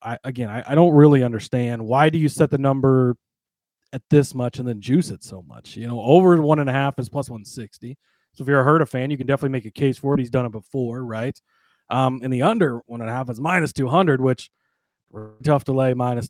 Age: 30-49